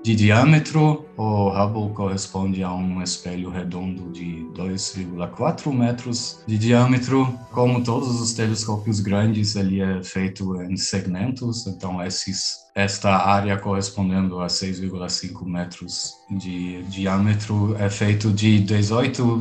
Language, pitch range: Portuguese, 100-125 Hz